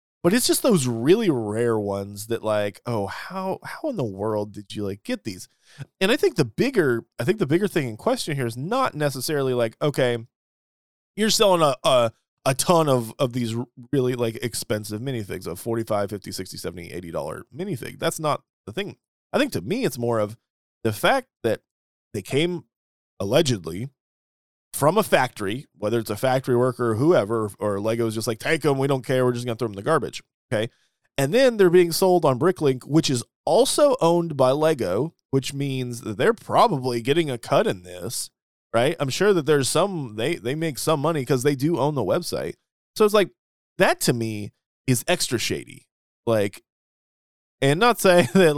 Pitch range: 115-165 Hz